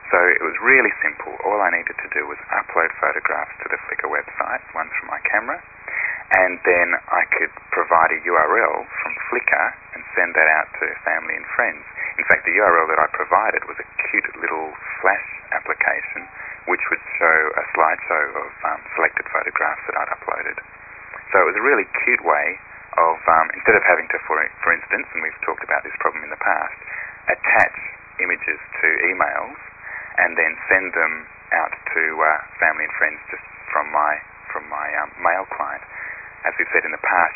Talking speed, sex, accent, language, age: 185 wpm, male, Australian, English, 30-49